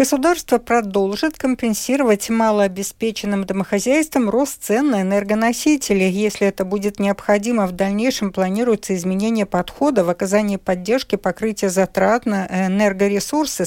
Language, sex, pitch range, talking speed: Russian, female, 195-235 Hz, 110 wpm